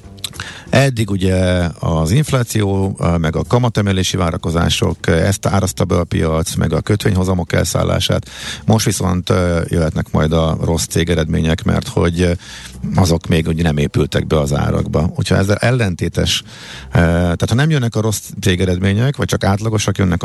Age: 50-69